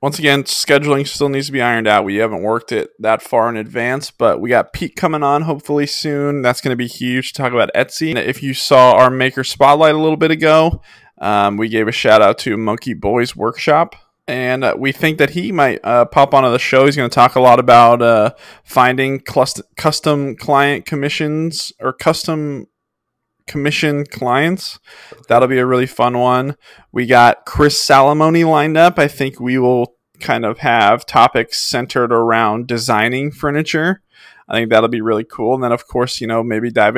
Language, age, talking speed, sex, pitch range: English, 20-39, 195 wpm, male, 120-145 Hz